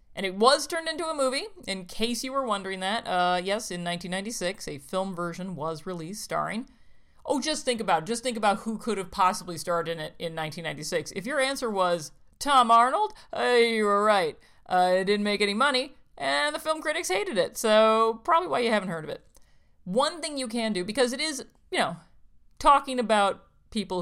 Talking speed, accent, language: 205 wpm, American, English